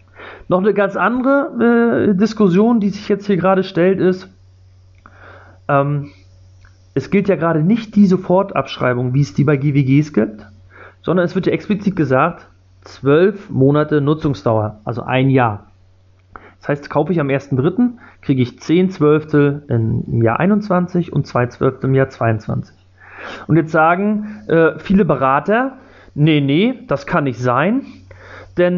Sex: male